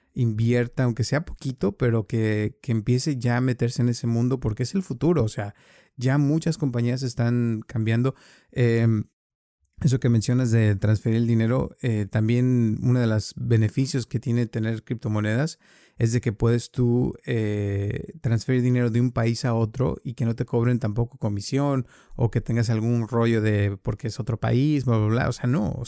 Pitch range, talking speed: 115-135 Hz, 185 wpm